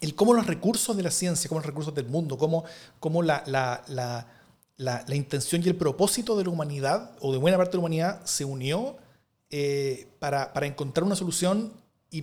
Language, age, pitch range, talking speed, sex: Spanish, 30-49, 145-180 Hz, 205 wpm, male